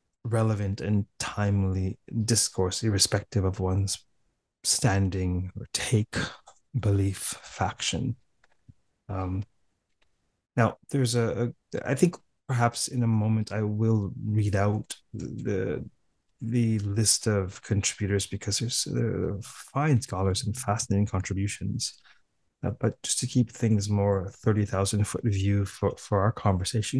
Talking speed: 120 wpm